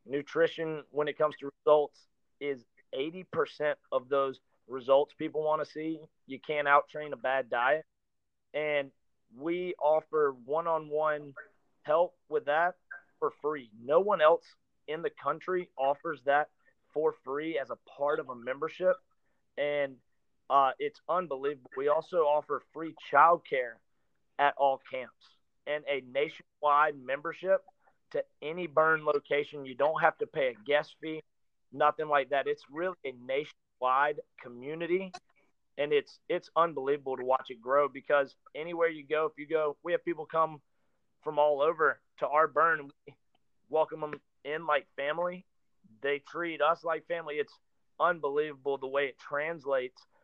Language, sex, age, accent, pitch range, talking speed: English, male, 30-49, American, 140-165 Hz, 150 wpm